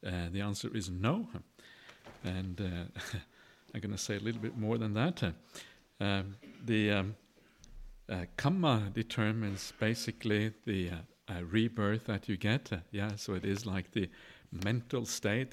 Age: 50-69